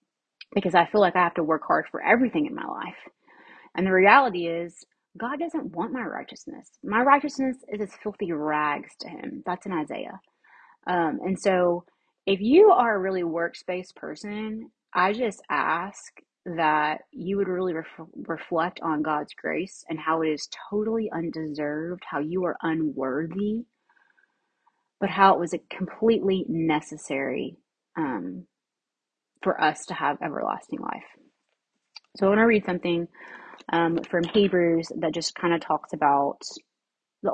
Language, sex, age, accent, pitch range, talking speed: English, female, 30-49, American, 160-220 Hz, 155 wpm